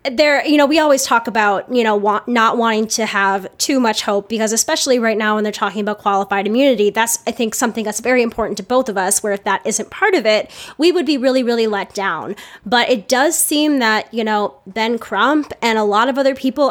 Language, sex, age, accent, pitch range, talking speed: English, female, 10-29, American, 215-260 Hz, 240 wpm